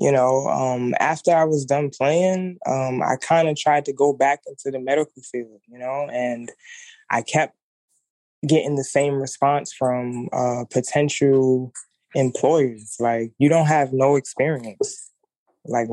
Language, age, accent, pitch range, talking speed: English, 20-39, American, 130-170 Hz, 145 wpm